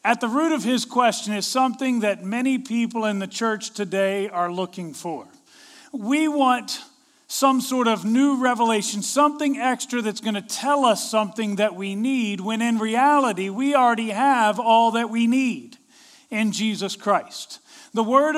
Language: English